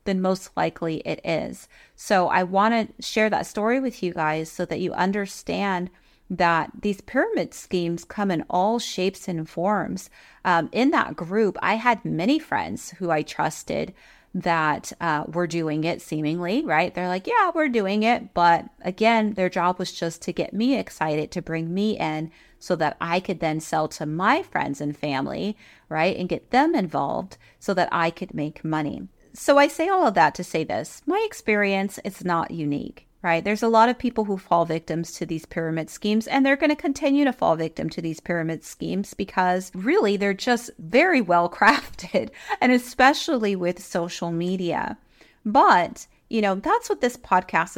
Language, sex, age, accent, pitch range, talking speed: English, female, 30-49, American, 165-220 Hz, 185 wpm